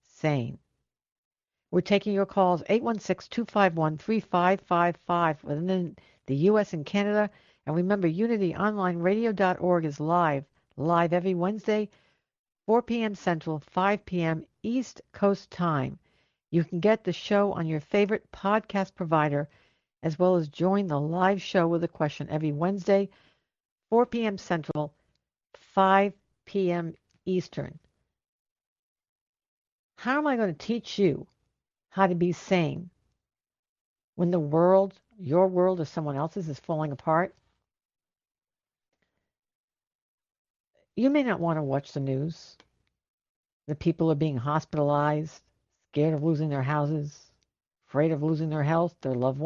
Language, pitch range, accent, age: English, 155-195 Hz, American, 60-79